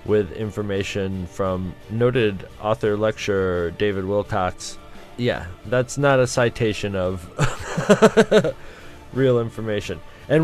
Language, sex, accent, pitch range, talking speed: English, male, American, 95-115 Hz, 90 wpm